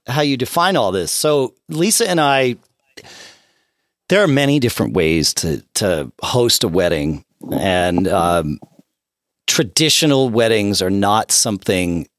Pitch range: 90-135 Hz